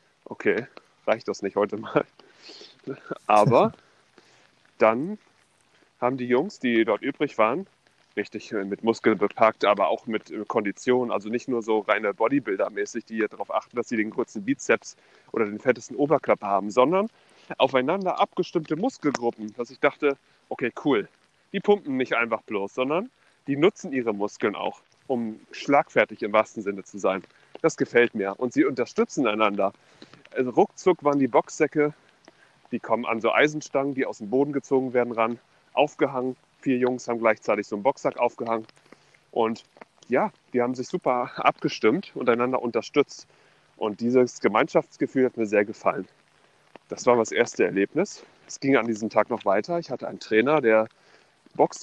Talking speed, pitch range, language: 160 wpm, 110-140 Hz, German